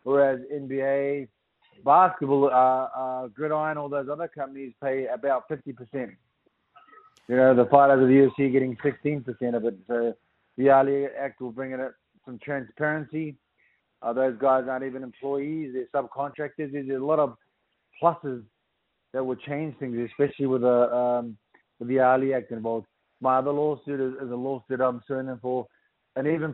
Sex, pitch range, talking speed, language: male, 130-150 Hz, 160 wpm, English